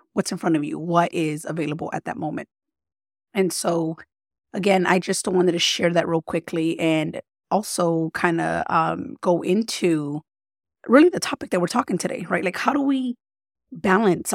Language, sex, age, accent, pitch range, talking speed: English, female, 30-49, American, 170-205 Hz, 170 wpm